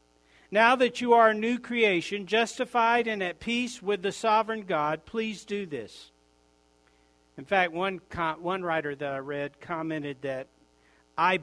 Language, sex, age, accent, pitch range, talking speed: English, male, 50-69, American, 125-185 Hz, 150 wpm